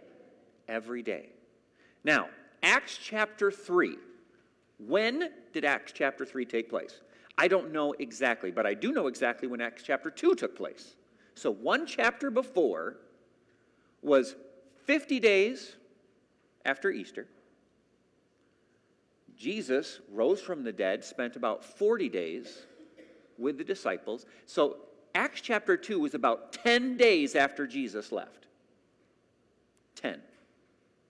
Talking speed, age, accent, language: 120 wpm, 50-69, American, English